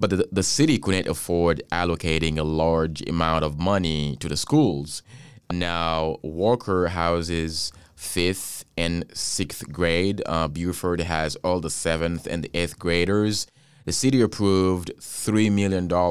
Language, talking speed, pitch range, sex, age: English, 135 wpm, 80-95 Hz, male, 20-39